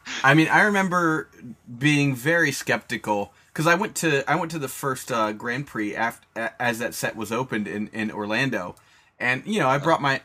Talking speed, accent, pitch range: 200 wpm, American, 110-150 Hz